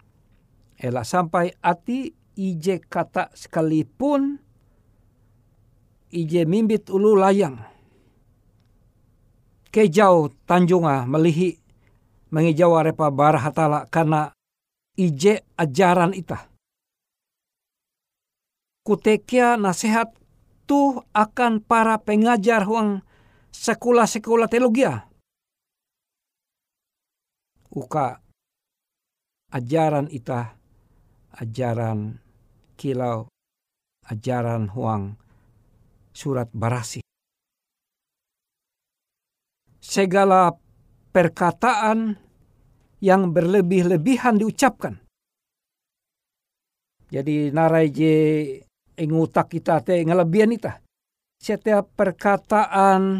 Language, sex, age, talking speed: Indonesian, male, 60-79, 60 wpm